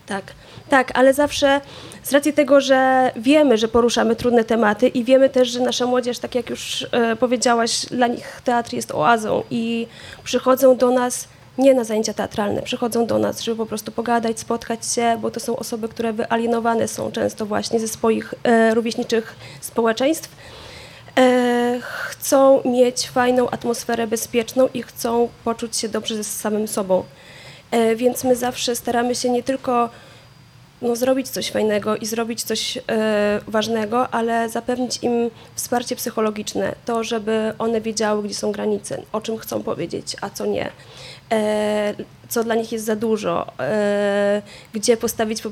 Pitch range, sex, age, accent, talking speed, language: 225-250 Hz, female, 20-39, native, 150 wpm, Polish